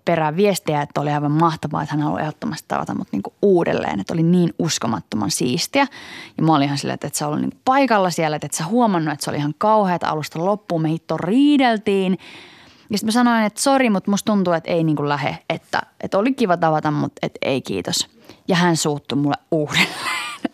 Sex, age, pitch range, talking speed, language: female, 20-39, 150-205 Hz, 210 wpm, Finnish